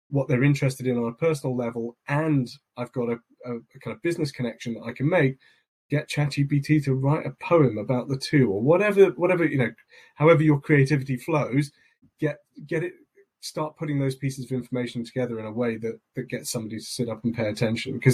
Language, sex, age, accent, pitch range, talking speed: English, male, 30-49, British, 120-140 Hz, 210 wpm